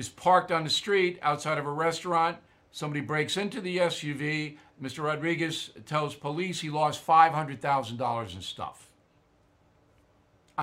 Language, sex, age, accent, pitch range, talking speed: English, male, 60-79, American, 130-175 Hz, 135 wpm